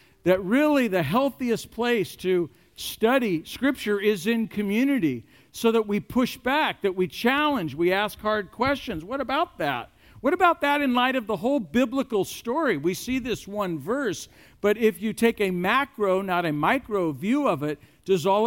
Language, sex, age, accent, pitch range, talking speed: English, male, 50-69, American, 150-225 Hz, 180 wpm